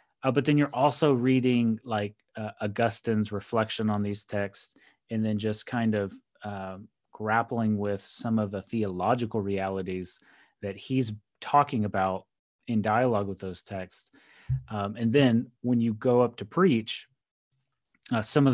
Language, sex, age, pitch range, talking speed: English, male, 30-49, 100-120 Hz, 150 wpm